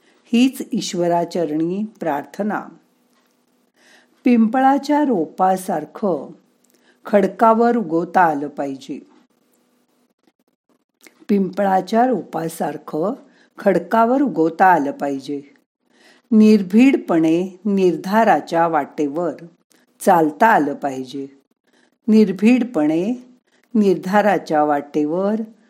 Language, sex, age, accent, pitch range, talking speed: Marathi, female, 50-69, native, 160-245 Hz, 45 wpm